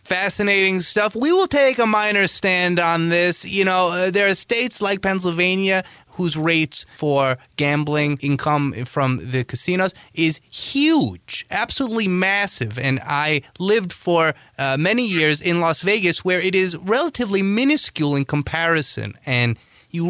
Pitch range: 135-195 Hz